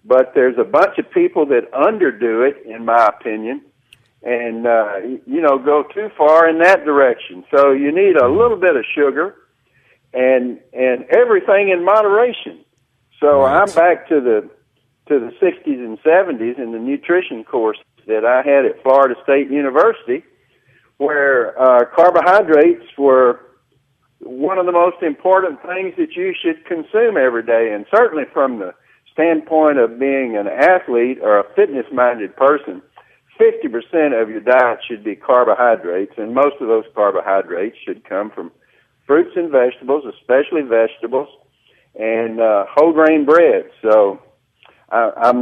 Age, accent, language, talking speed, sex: 60-79, American, English, 150 wpm, male